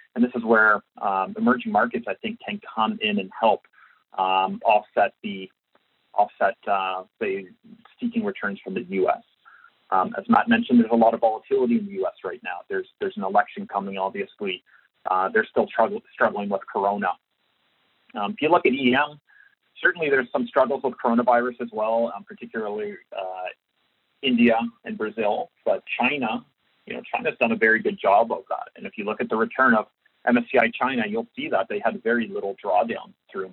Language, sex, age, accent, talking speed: English, male, 30-49, American, 185 wpm